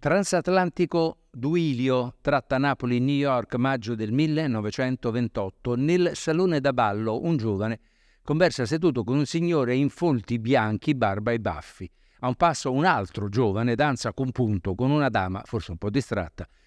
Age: 50-69